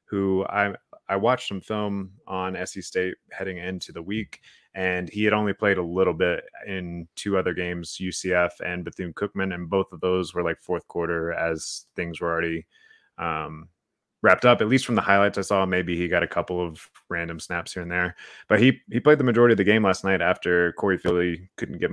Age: 20-39